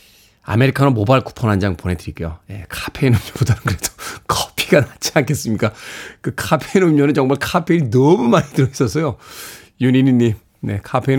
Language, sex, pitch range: Korean, male, 120-185 Hz